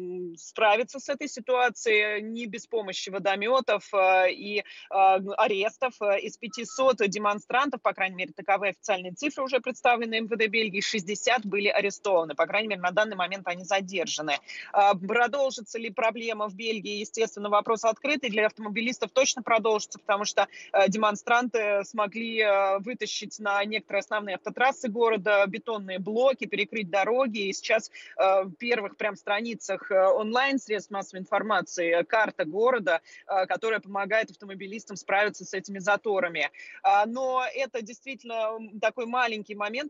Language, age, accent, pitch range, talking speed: Russian, 20-39, native, 195-230 Hz, 130 wpm